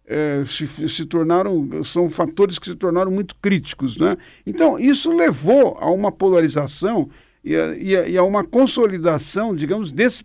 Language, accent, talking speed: Portuguese, Brazilian, 165 wpm